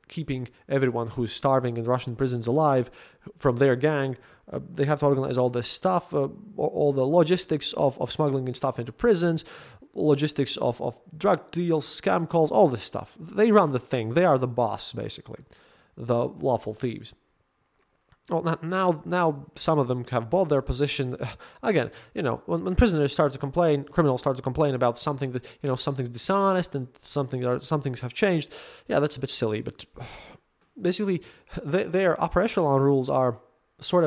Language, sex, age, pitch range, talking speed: English, male, 20-39, 130-170 Hz, 180 wpm